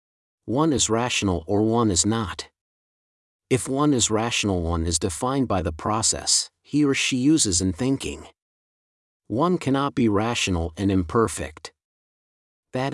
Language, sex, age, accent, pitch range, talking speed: English, male, 50-69, American, 100-125 Hz, 140 wpm